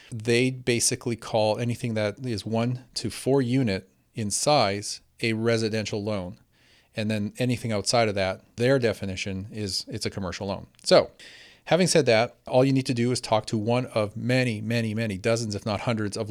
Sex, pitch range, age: male, 105-120 Hz, 40-59